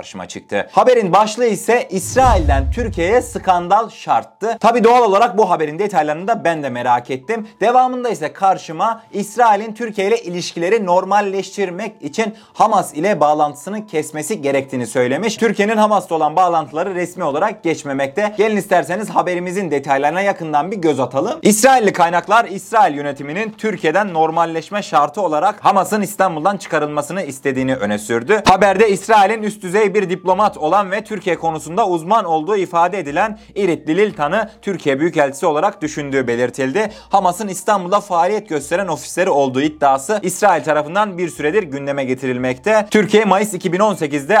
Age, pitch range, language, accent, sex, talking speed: 30-49, 150-210 Hz, Turkish, native, male, 135 wpm